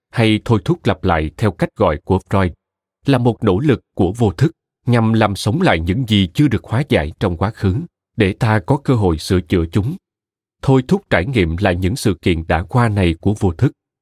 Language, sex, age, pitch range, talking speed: Vietnamese, male, 30-49, 95-130 Hz, 225 wpm